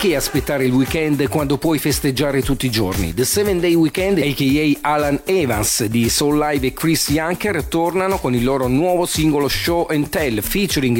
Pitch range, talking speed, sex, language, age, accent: 125-155 Hz, 180 wpm, male, Italian, 40-59, native